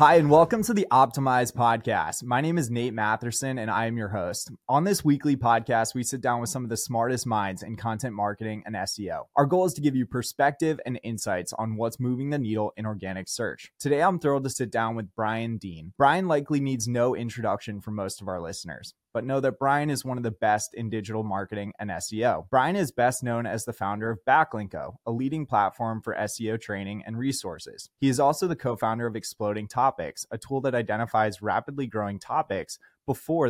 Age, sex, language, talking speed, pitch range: 20-39, male, English, 210 wpm, 110-130 Hz